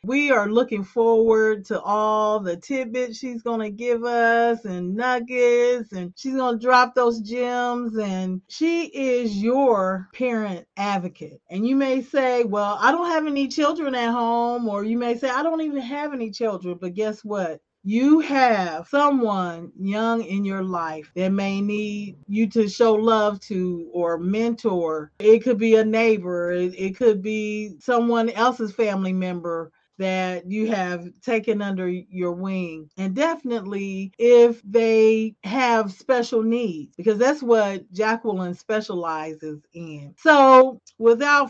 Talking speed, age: 150 wpm, 40-59